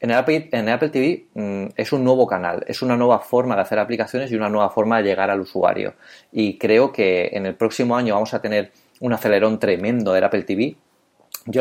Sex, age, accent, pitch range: male, 30-49, Spanish, 95-115 Hz